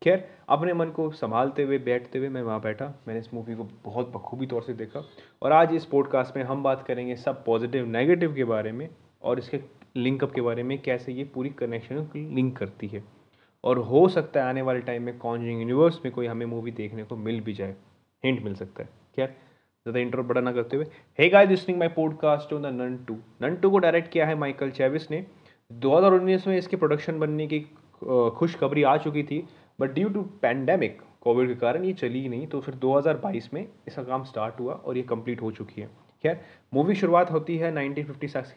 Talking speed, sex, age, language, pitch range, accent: 205 wpm, male, 30-49, Hindi, 120-155 Hz, native